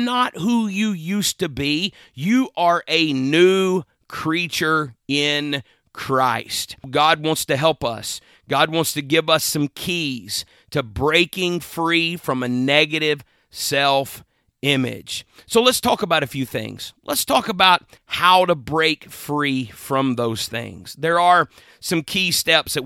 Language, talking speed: English, 145 wpm